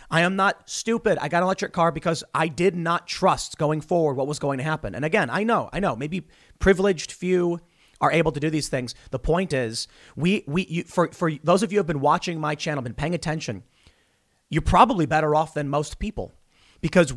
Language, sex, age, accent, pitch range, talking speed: English, male, 30-49, American, 135-175 Hz, 225 wpm